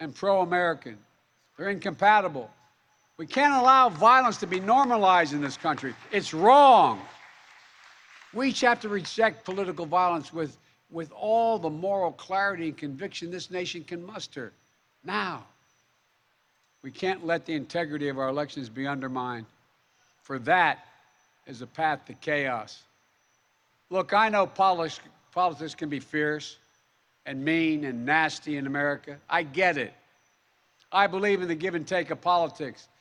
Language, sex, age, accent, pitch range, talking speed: English, male, 60-79, American, 155-220 Hz, 140 wpm